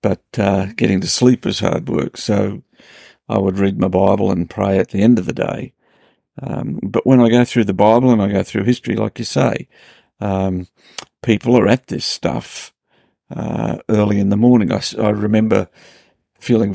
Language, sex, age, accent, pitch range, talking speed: English, male, 50-69, British, 100-120 Hz, 190 wpm